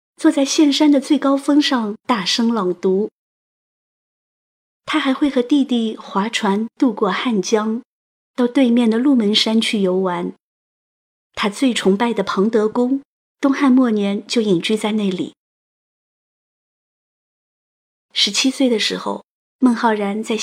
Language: Chinese